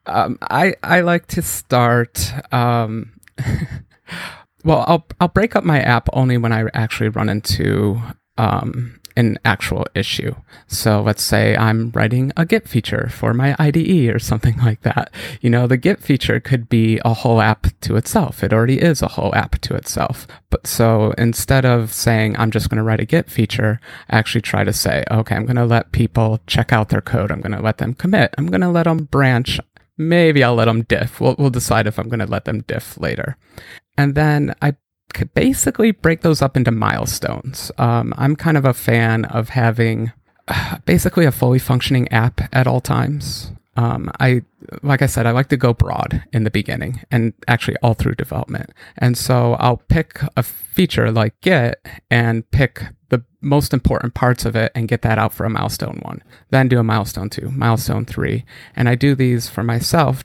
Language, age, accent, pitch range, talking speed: English, 30-49, American, 115-140 Hz, 195 wpm